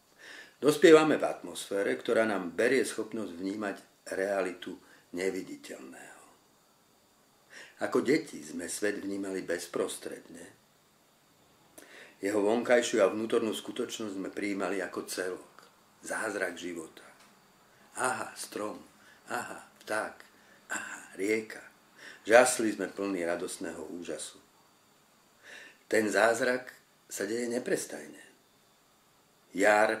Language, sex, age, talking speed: Slovak, male, 50-69, 85 wpm